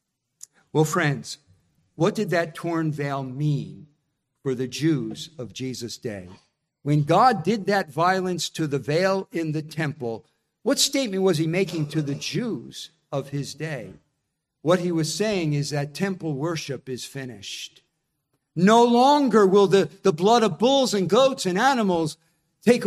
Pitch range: 155-205 Hz